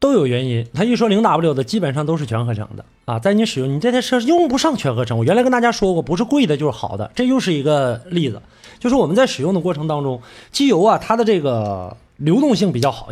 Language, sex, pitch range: Chinese, male, 155-255 Hz